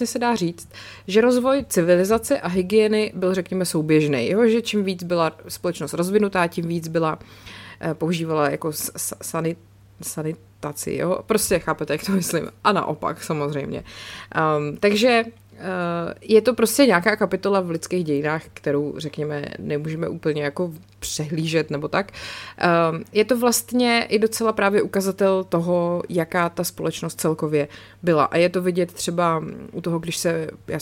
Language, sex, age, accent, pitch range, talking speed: Czech, female, 20-39, native, 165-215 Hz, 140 wpm